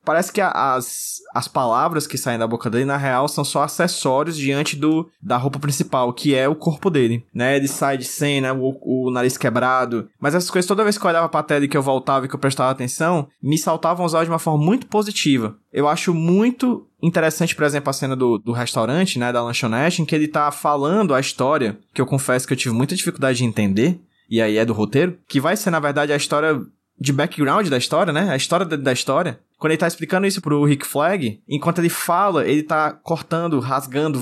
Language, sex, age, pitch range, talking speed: Portuguese, male, 20-39, 135-170 Hz, 230 wpm